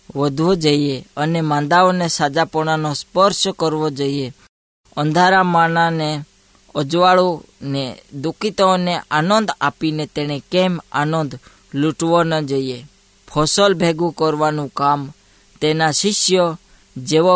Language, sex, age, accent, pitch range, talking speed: Hindi, female, 20-39, native, 145-175 Hz, 85 wpm